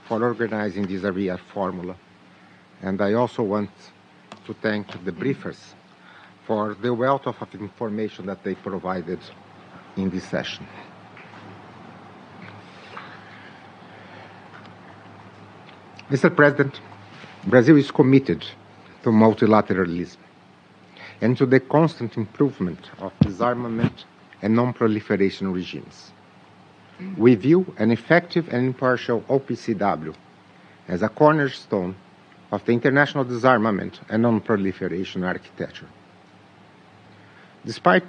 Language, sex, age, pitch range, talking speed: English, male, 60-79, 95-135 Hz, 95 wpm